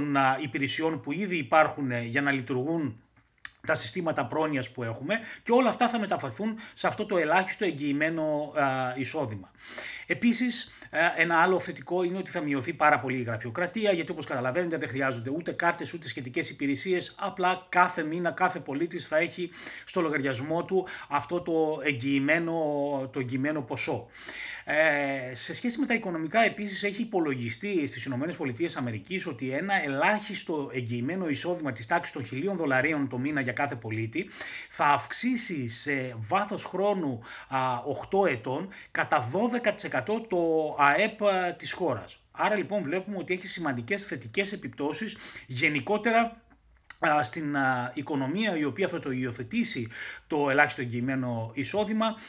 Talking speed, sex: 135 wpm, male